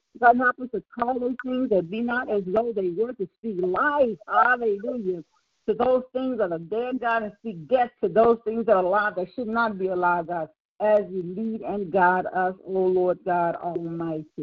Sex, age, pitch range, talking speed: female, 50-69, 170-210 Hz, 205 wpm